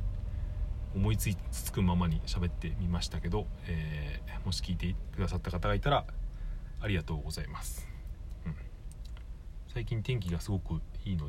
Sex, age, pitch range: male, 40-59, 80-100 Hz